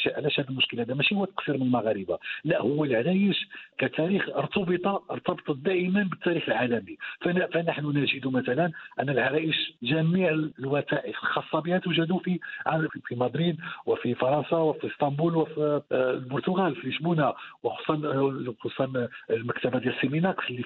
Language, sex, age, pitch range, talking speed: Arabic, male, 50-69, 130-170 Hz, 125 wpm